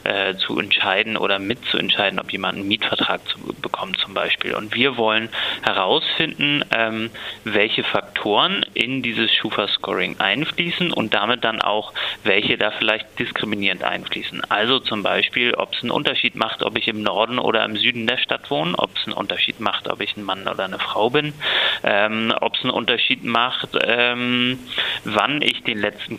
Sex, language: male, German